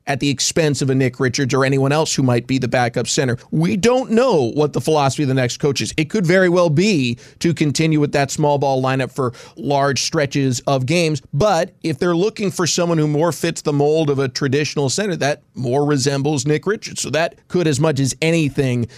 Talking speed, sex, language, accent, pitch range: 225 wpm, male, English, American, 135-155 Hz